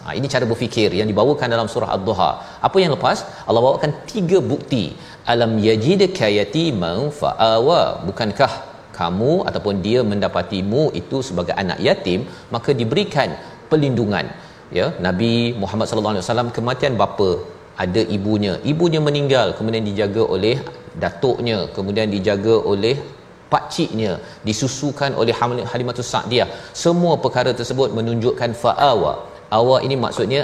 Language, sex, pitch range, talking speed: Malayalam, male, 105-130 Hz, 130 wpm